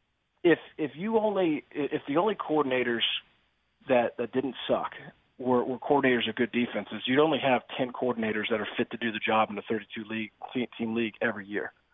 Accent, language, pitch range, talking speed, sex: American, English, 115-140 Hz, 190 wpm, male